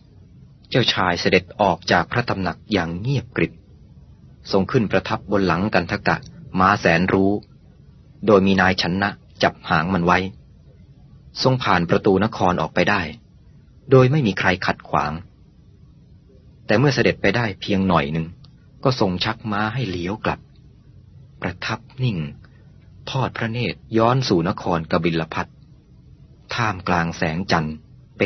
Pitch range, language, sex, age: 90-120 Hz, Thai, male, 30-49